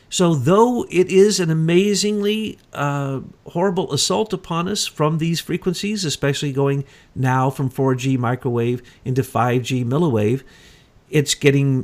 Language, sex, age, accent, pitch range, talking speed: English, male, 50-69, American, 125-165 Hz, 125 wpm